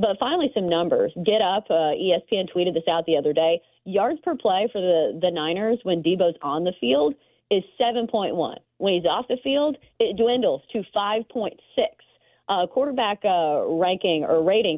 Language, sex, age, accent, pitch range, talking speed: English, female, 30-49, American, 170-240 Hz, 175 wpm